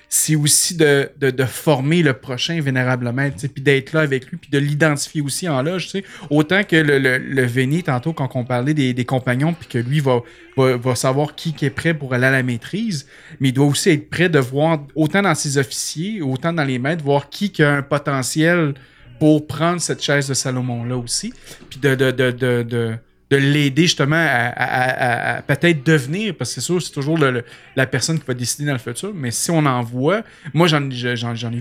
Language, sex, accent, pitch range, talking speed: French, male, Canadian, 125-155 Hz, 225 wpm